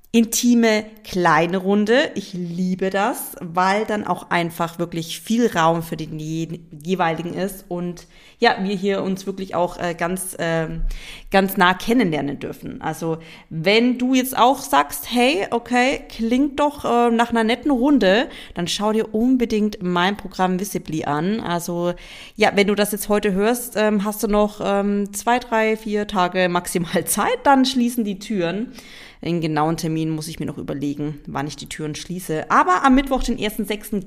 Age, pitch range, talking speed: 30-49, 175-220 Hz, 160 wpm